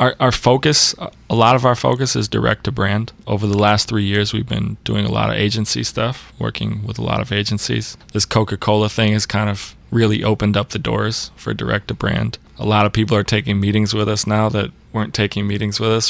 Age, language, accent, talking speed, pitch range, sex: 20-39, English, American, 210 wpm, 105-110 Hz, male